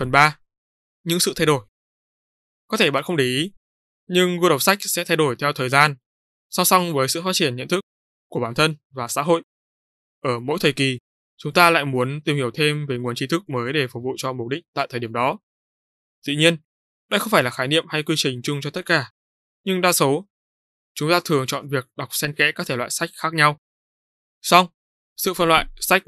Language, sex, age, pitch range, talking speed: Vietnamese, male, 20-39, 125-165 Hz, 230 wpm